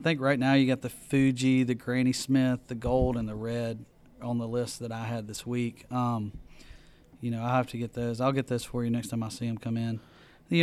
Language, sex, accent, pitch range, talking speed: English, male, American, 115-130 Hz, 255 wpm